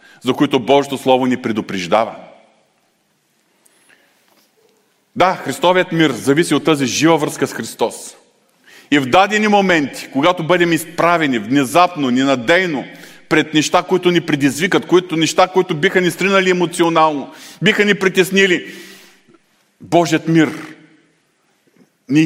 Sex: male